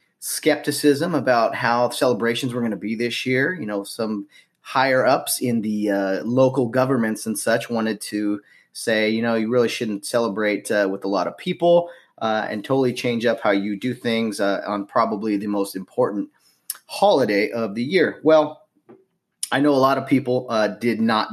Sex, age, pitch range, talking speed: male, 30-49, 110-145 Hz, 185 wpm